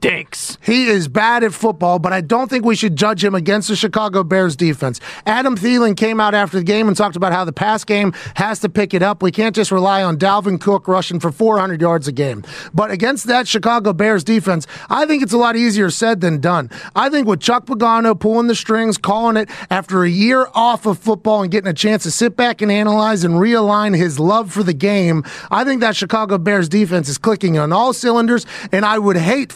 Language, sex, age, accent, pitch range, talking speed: English, male, 30-49, American, 185-230 Hz, 225 wpm